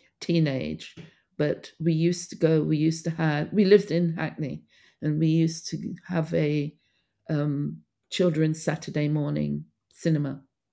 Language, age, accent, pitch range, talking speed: English, 50-69, British, 135-160 Hz, 140 wpm